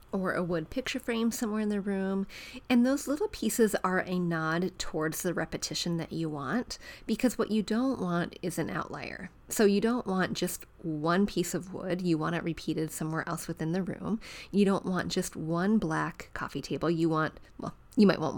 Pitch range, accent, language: 165-200 Hz, American, English